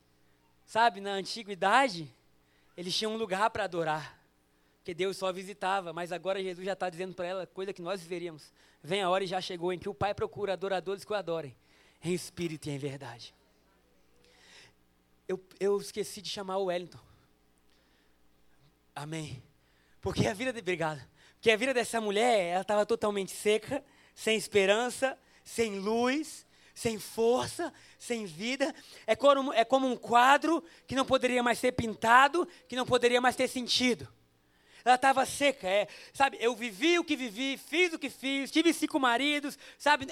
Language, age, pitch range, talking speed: Portuguese, 20-39, 175-275 Hz, 160 wpm